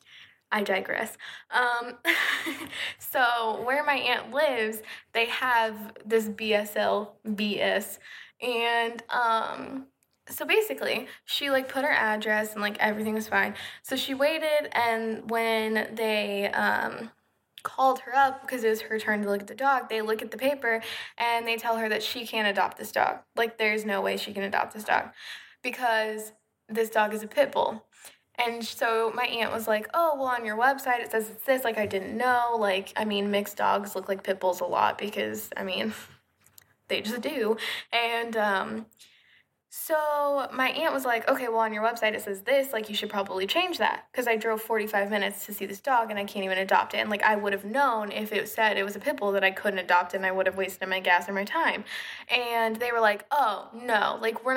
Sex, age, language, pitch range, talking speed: female, 10-29, English, 205-245 Hz, 205 wpm